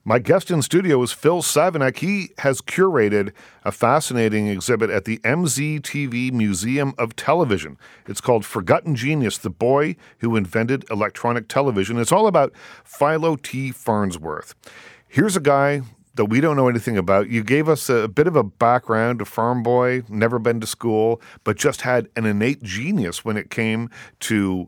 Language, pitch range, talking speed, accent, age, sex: English, 105-130 Hz, 170 wpm, American, 40-59, male